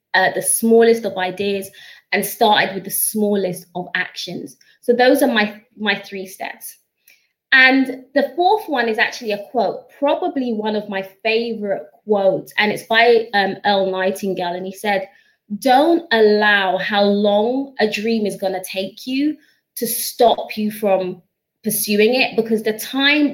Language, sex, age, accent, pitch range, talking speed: English, female, 20-39, British, 200-255 Hz, 160 wpm